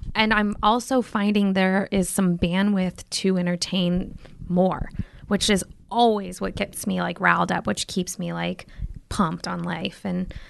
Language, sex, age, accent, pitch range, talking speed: English, female, 20-39, American, 185-220 Hz, 160 wpm